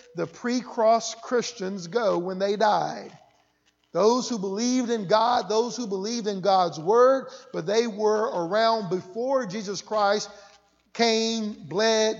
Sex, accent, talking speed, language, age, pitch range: male, American, 135 wpm, English, 50-69, 195-230 Hz